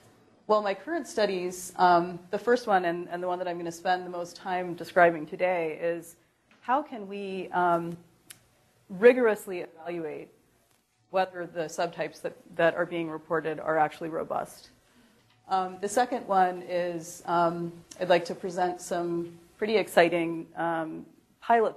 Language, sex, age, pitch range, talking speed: English, female, 30-49, 165-195 Hz, 150 wpm